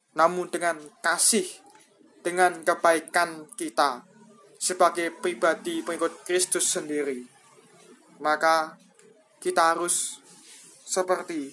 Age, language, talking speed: 20-39, Indonesian, 80 wpm